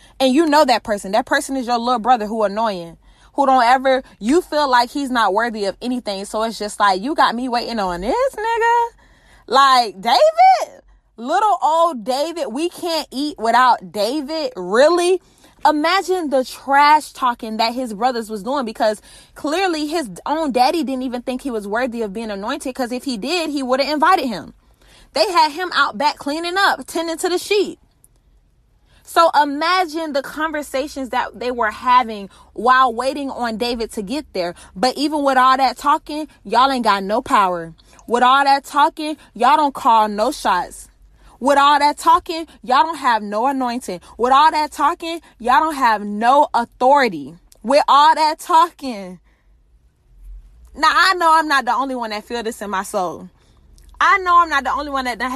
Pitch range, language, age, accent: 235-310 Hz, English, 20-39, American